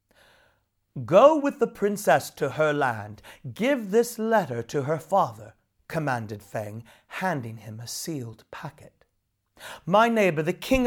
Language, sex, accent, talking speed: English, male, British, 130 wpm